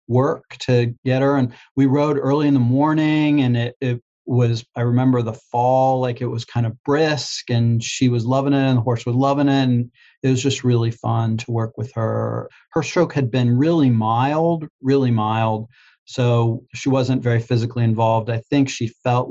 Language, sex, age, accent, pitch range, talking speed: English, male, 40-59, American, 120-135 Hz, 200 wpm